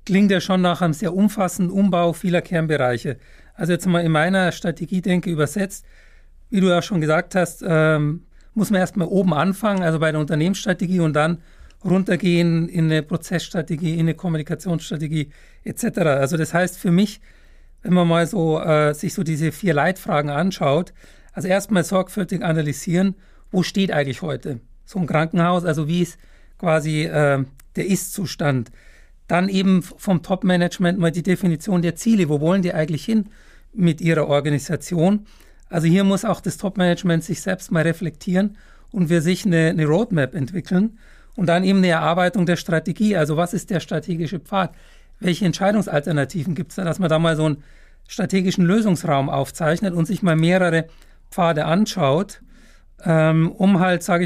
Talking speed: 165 wpm